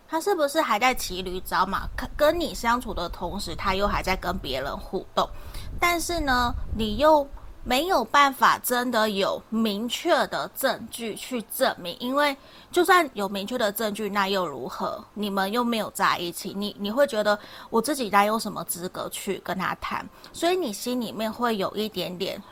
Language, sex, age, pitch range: Chinese, female, 30-49, 200-245 Hz